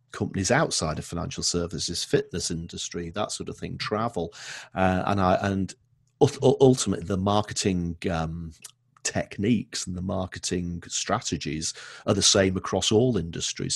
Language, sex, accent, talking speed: English, male, British, 135 wpm